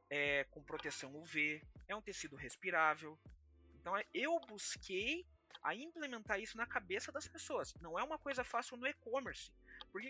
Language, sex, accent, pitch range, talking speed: Portuguese, male, Brazilian, 185-280 Hz, 160 wpm